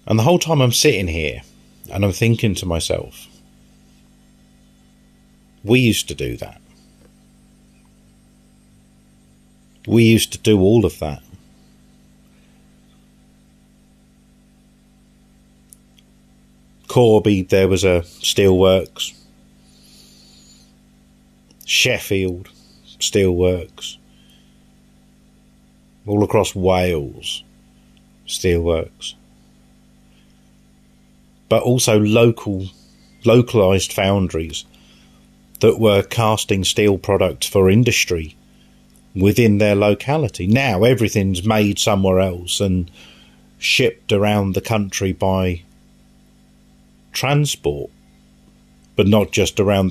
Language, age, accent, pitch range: English, 50-69, British, 90-110 Hz